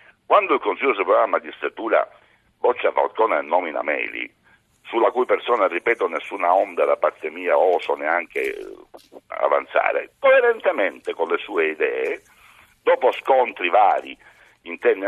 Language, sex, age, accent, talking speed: Italian, male, 60-79, native, 125 wpm